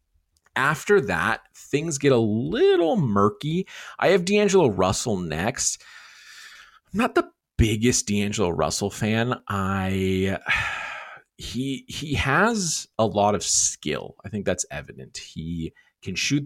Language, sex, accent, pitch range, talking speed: English, male, American, 100-130 Hz, 125 wpm